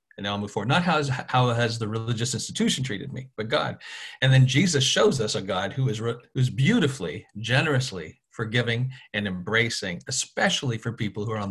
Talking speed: 190 wpm